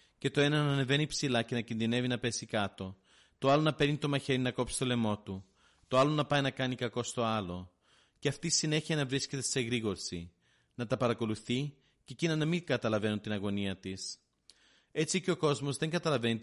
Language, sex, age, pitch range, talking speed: Greek, male, 30-49, 105-140 Hz, 205 wpm